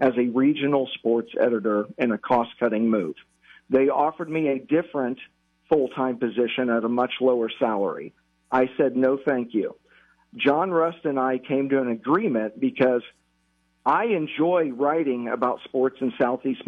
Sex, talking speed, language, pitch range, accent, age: male, 150 wpm, English, 120-145 Hz, American, 50-69